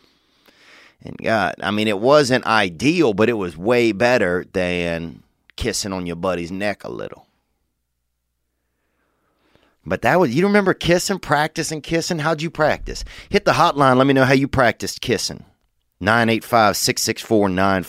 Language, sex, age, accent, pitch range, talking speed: English, male, 30-49, American, 85-110 Hz, 160 wpm